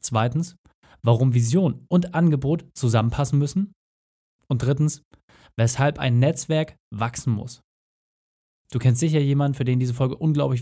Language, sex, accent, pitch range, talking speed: German, male, German, 125-170 Hz, 130 wpm